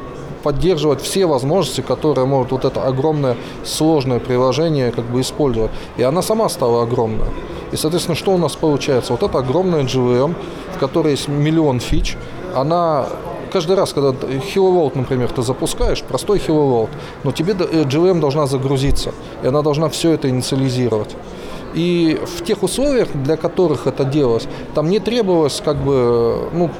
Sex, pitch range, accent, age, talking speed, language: male, 130-175 Hz, native, 20-39, 155 wpm, Russian